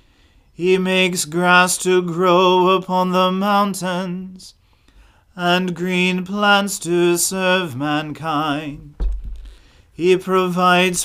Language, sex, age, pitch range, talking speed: English, male, 40-59, 160-185 Hz, 85 wpm